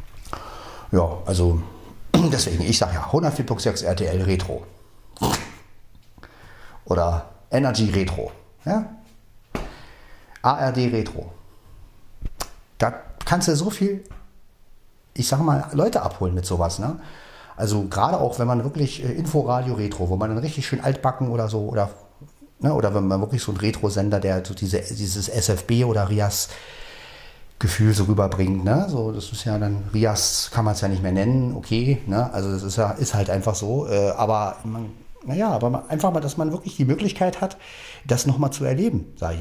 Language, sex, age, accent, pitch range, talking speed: German, male, 40-59, German, 95-125 Hz, 165 wpm